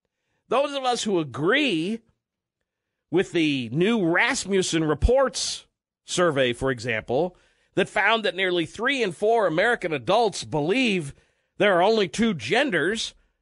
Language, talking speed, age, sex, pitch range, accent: English, 125 wpm, 50-69, male, 170-265 Hz, American